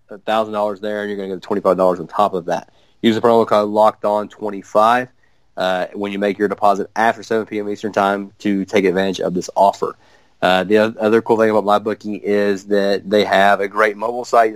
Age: 30-49